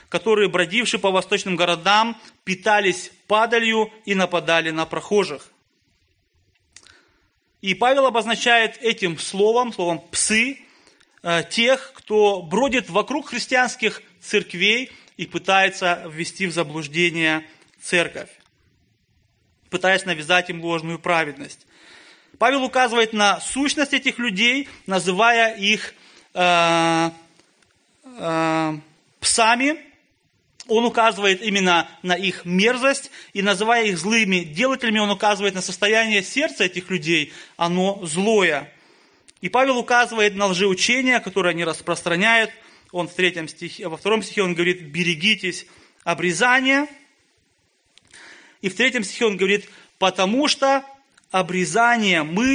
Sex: male